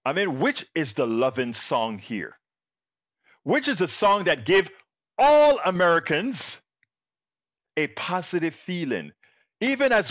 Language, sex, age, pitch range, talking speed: English, male, 50-69, 180-235 Hz, 125 wpm